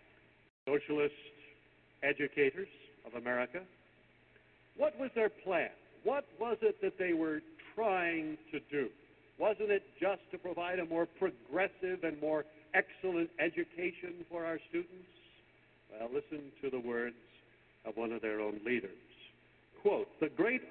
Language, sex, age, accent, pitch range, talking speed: English, male, 60-79, American, 140-215 Hz, 135 wpm